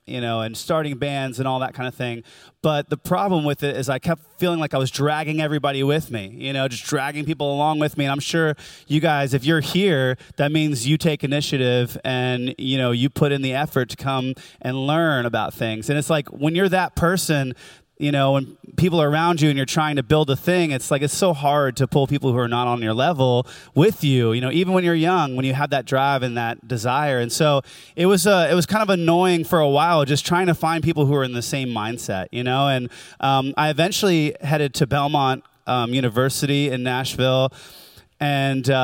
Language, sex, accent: English, male, American